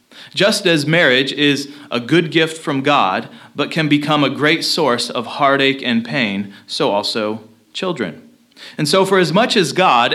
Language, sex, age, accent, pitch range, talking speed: English, male, 30-49, American, 140-180 Hz, 170 wpm